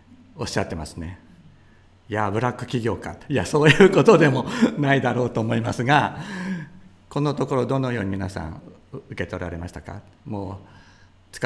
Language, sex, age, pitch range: Japanese, male, 60-79, 95-115 Hz